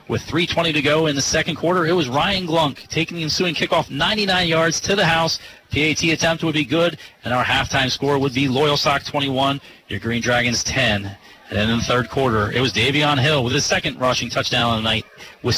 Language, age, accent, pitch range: English, 30-49, American, 130-165 Hz